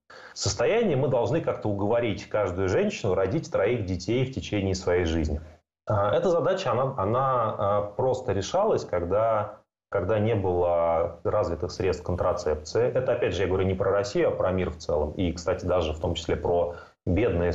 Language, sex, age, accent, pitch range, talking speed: Russian, male, 30-49, native, 80-100 Hz, 165 wpm